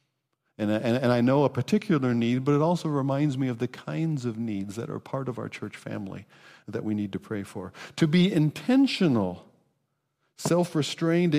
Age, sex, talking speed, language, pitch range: 50-69, male, 175 wpm, English, 125-165 Hz